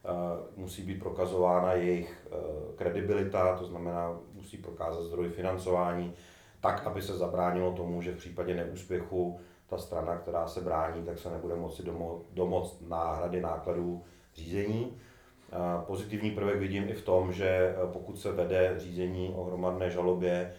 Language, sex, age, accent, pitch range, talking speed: Czech, male, 30-49, native, 90-95 Hz, 145 wpm